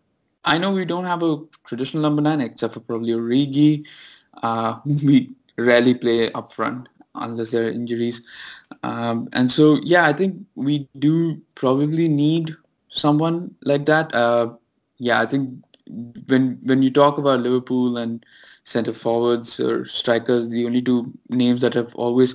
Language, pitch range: English, 120-140 Hz